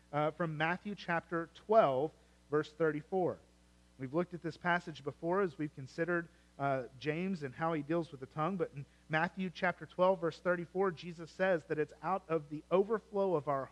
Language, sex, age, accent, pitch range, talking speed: English, male, 40-59, American, 130-180 Hz, 185 wpm